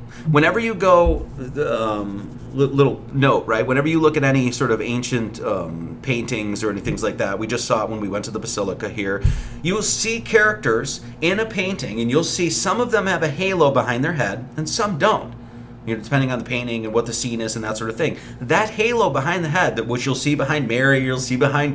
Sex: male